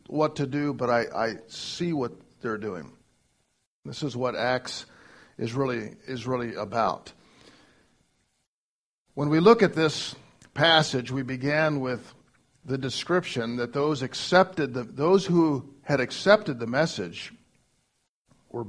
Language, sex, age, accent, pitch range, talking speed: English, male, 50-69, American, 125-165 Hz, 130 wpm